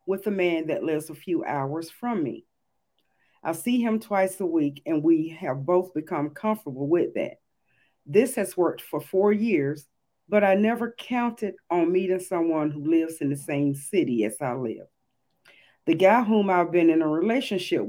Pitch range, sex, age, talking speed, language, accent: 150-195 Hz, female, 40-59, 180 wpm, English, American